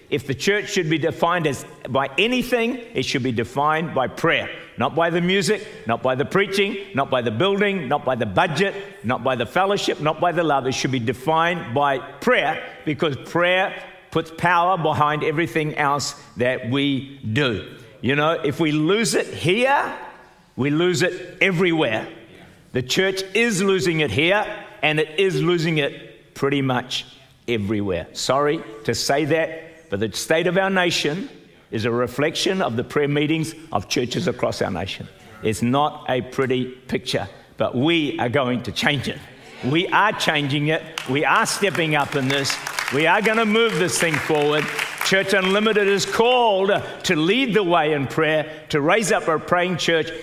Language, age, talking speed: English, 50-69, 175 wpm